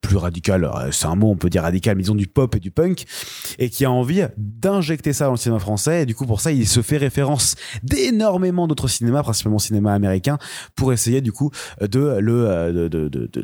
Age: 30-49